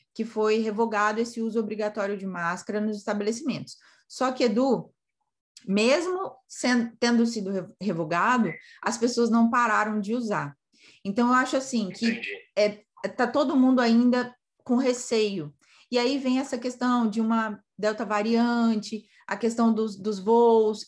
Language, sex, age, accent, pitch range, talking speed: Portuguese, female, 20-39, Brazilian, 215-255 Hz, 140 wpm